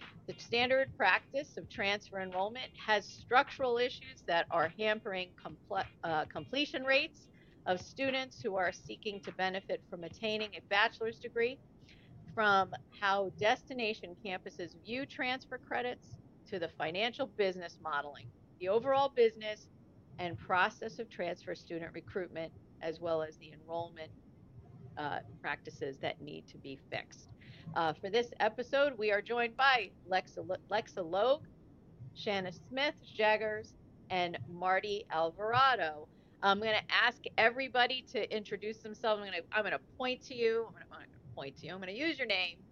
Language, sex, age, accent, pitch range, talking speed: English, female, 50-69, American, 170-240 Hz, 150 wpm